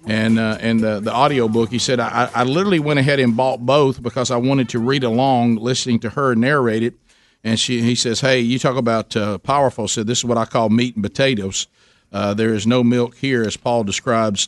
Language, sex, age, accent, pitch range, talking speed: English, male, 50-69, American, 110-125 Hz, 235 wpm